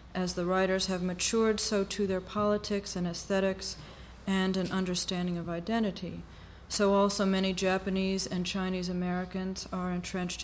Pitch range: 180-210 Hz